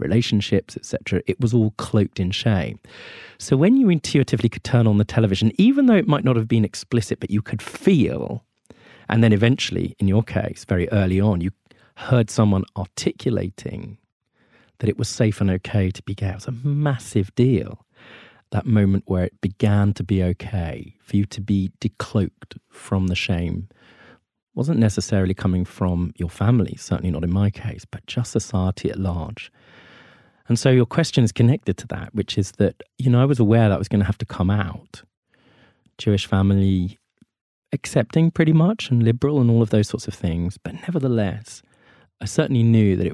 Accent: British